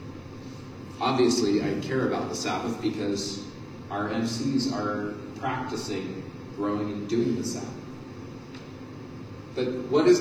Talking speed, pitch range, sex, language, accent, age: 110 wpm, 115-130 Hz, male, English, American, 30-49